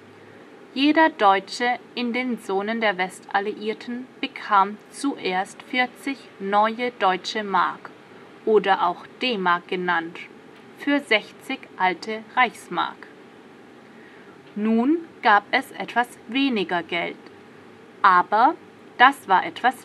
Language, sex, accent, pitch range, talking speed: English, female, German, 190-255 Hz, 95 wpm